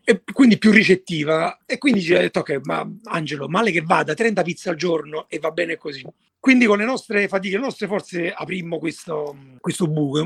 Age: 40-59